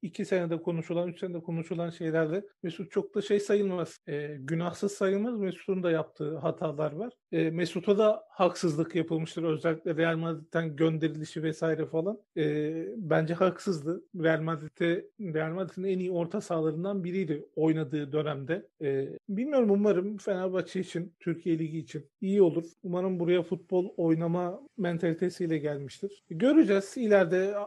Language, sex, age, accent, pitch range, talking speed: Turkish, male, 40-59, native, 170-205 Hz, 135 wpm